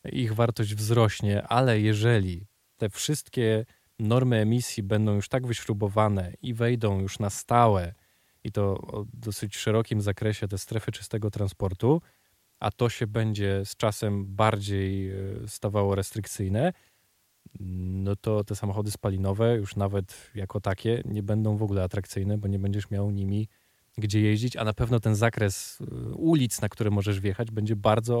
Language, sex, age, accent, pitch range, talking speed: Polish, male, 20-39, native, 100-115 Hz, 150 wpm